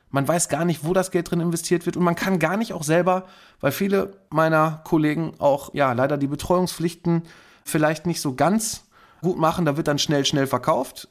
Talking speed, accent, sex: 205 wpm, German, male